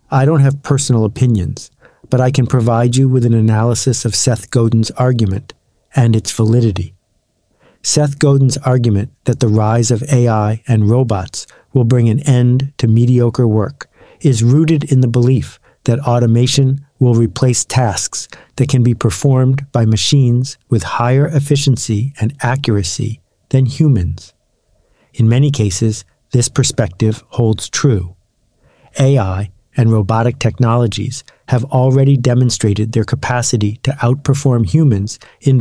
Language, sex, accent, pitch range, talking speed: English, male, American, 110-130 Hz, 135 wpm